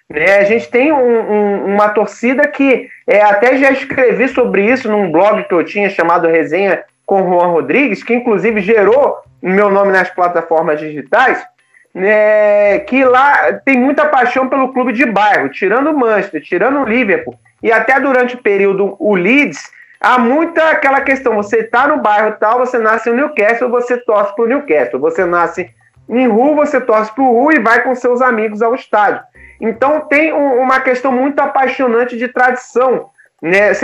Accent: Brazilian